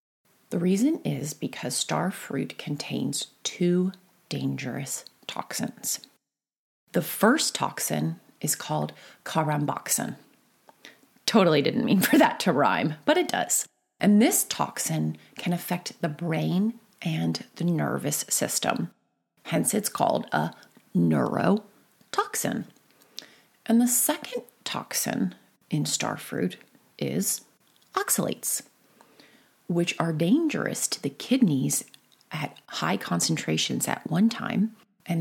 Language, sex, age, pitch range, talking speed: English, female, 30-49, 160-240 Hz, 110 wpm